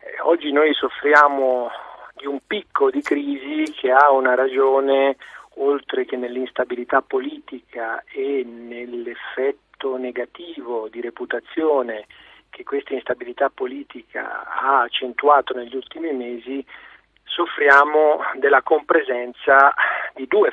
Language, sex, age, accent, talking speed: Italian, male, 40-59, native, 100 wpm